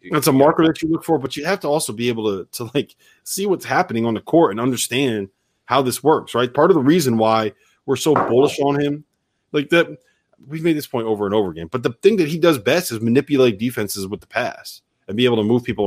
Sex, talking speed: male, 255 wpm